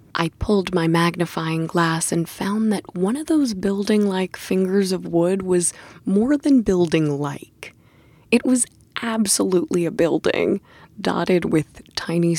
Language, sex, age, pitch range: English, female, 20-39, 155-195 Hz